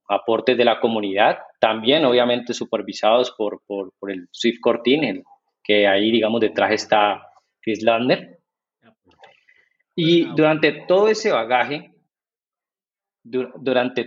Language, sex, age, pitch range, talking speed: Spanish, male, 30-49, 110-150 Hz, 110 wpm